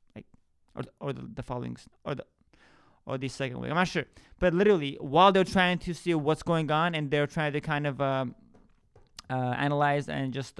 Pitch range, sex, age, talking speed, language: 140-170 Hz, male, 20-39, 200 wpm, English